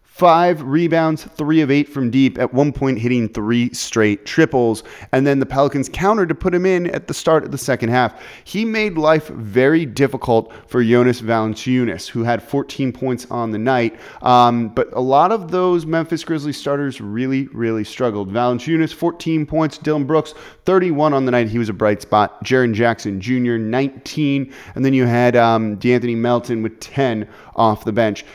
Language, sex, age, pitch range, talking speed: English, male, 30-49, 115-155 Hz, 185 wpm